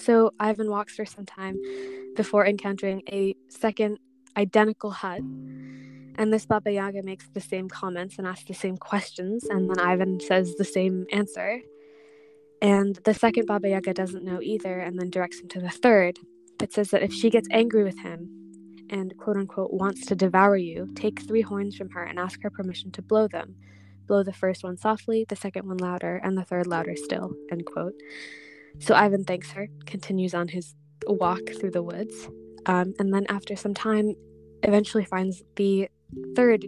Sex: female